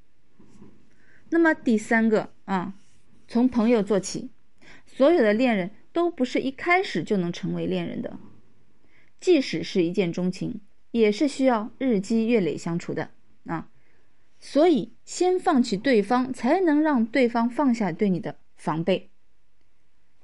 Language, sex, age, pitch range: Chinese, female, 20-39, 185-270 Hz